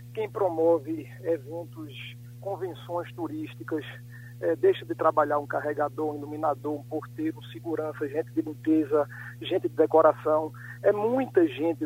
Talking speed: 125 wpm